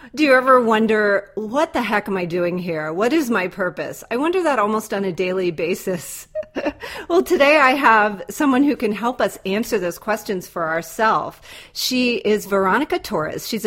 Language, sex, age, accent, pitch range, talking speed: English, female, 40-59, American, 190-245 Hz, 185 wpm